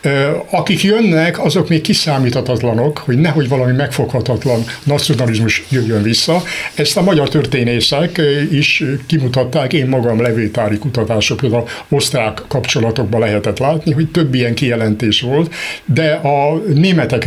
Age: 60-79